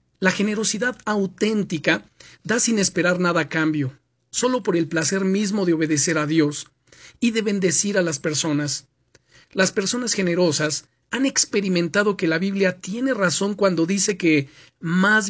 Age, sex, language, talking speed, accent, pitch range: 40-59, male, Spanish, 150 wpm, Mexican, 155-205 Hz